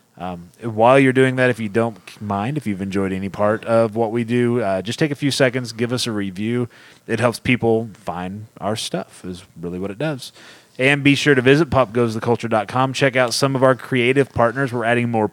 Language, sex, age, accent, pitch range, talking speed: English, male, 30-49, American, 110-135 Hz, 215 wpm